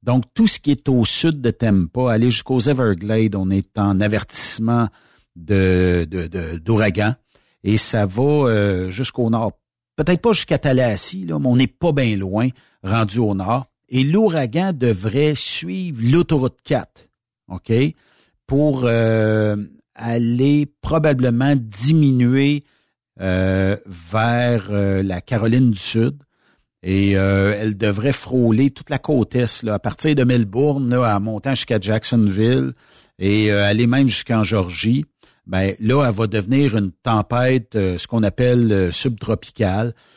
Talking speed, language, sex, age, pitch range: 145 wpm, French, male, 60-79, 100-125 Hz